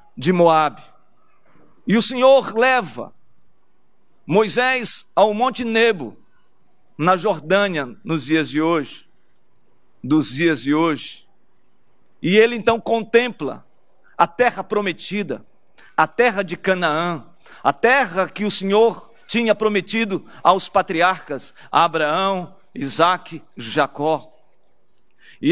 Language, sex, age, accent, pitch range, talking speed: Portuguese, male, 50-69, Brazilian, 165-230 Hz, 105 wpm